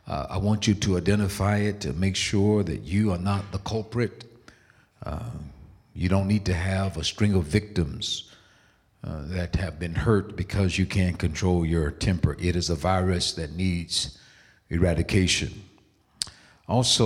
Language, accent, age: English, American, 60-79